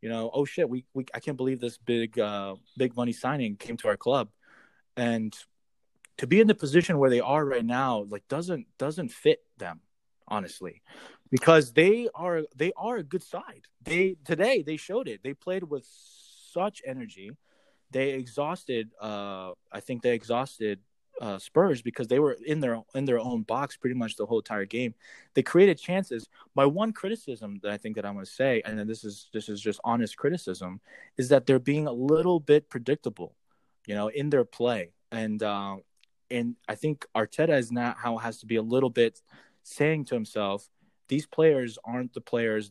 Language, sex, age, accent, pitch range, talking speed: English, male, 20-39, American, 110-145 Hz, 195 wpm